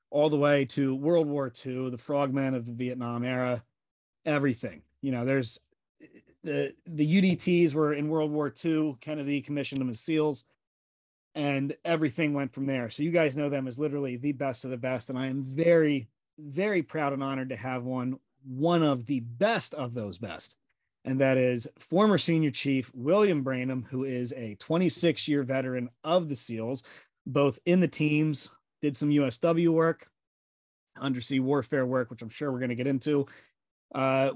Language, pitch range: English, 130-160 Hz